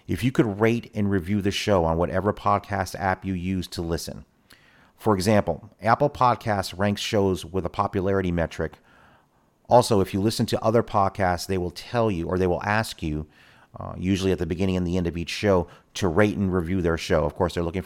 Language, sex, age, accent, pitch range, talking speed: English, male, 40-59, American, 90-110 Hz, 210 wpm